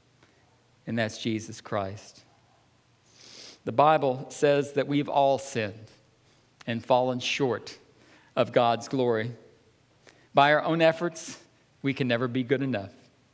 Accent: American